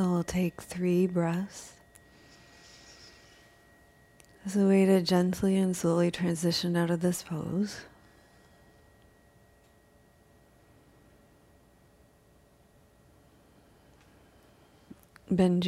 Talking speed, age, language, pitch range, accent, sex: 65 wpm, 40-59, English, 170-210 Hz, American, female